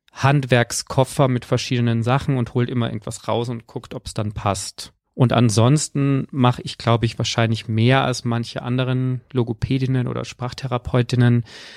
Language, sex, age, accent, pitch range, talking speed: German, male, 40-59, German, 110-125 Hz, 150 wpm